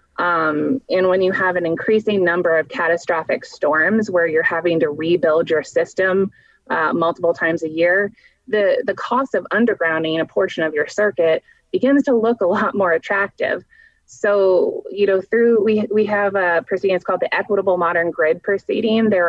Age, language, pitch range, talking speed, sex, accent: 20-39, English, 165-205 Hz, 175 wpm, female, American